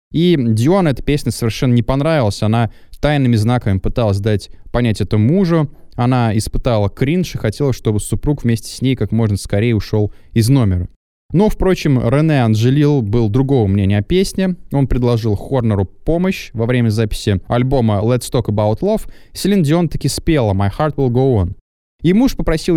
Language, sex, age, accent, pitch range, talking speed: Russian, male, 20-39, native, 105-145 Hz, 170 wpm